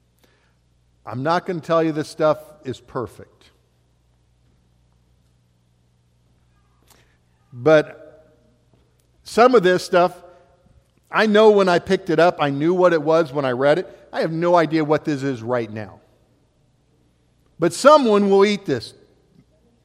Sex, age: male, 50-69